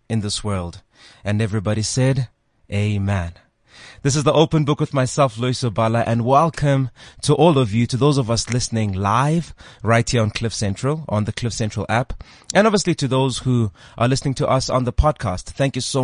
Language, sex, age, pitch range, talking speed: English, male, 20-39, 110-140 Hz, 200 wpm